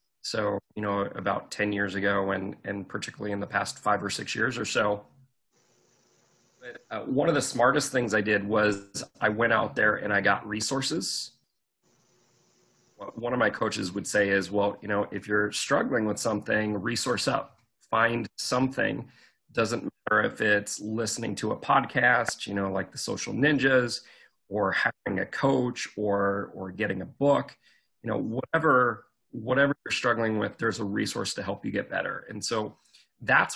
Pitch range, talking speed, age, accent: 100-120 Hz, 170 wpm, 30-49, American